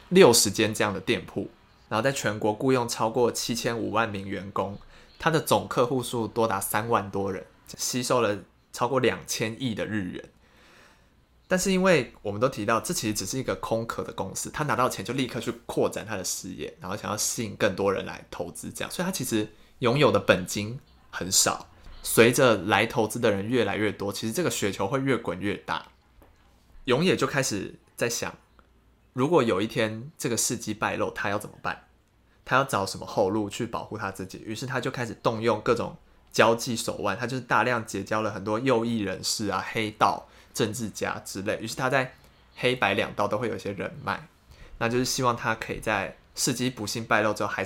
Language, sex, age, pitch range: Chinese, male, 20-39, 100-125 Hz